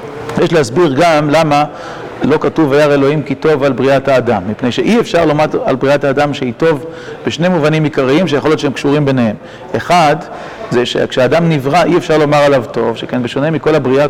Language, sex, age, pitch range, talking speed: Hebrew, male, 40-59, 130-155 Hz, 185 wpm